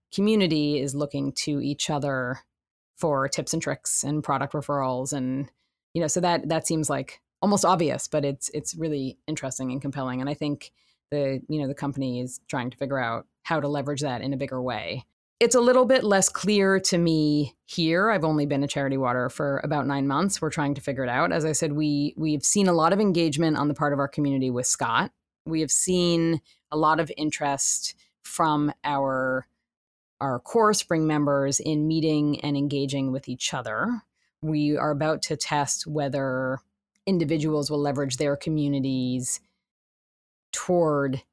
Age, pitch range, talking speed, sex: 30-49, 140-165 Hz, 185 wpm, female